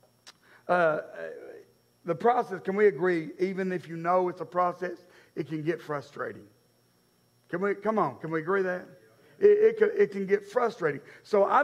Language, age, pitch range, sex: English, 50-69, 135-220 Hz, male